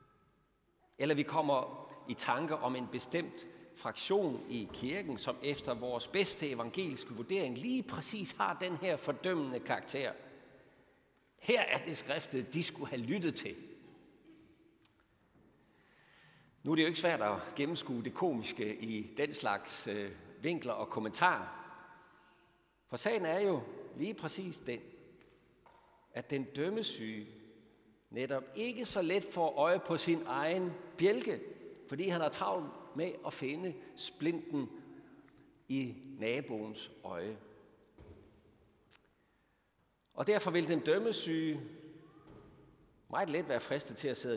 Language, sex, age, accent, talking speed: Danish, male, 60-79, native, 125 wpm